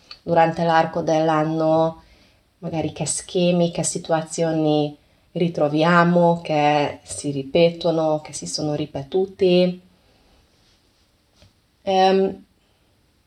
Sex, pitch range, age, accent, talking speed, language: female, 155-190 Hz, 20-39, native, 75 wpm, Italian